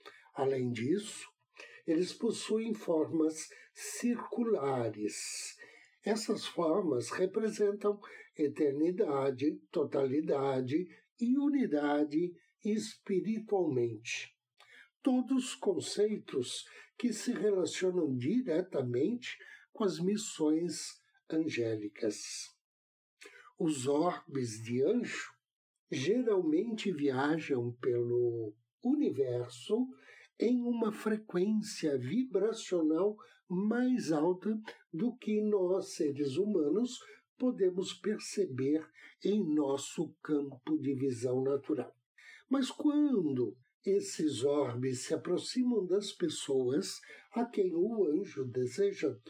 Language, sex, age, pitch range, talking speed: Portuguese, male, 60-79, 145-225 Hz, 80 wpm